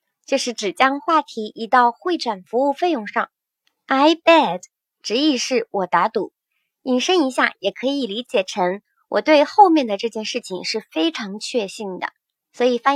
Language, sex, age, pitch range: Chinese, male, 20-39, 215-295 Hz